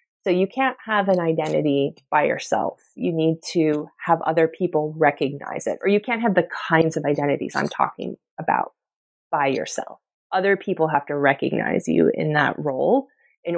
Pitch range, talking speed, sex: 160-195 Hz, 170 wpm, female